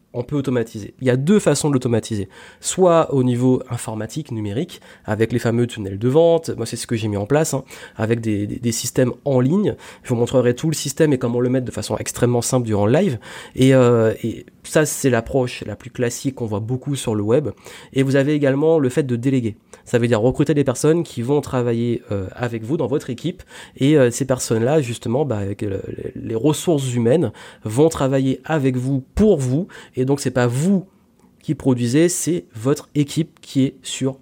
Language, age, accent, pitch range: French, 30-49, French, 120-150 Hz